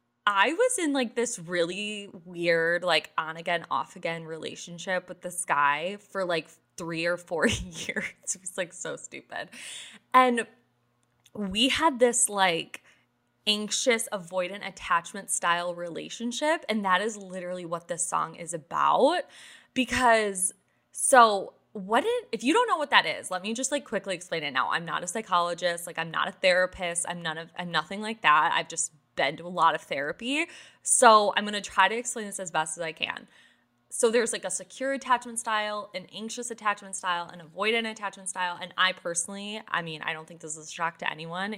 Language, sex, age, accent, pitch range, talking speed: English, female, 20-39, American, 170-230 Hz, 190 wpm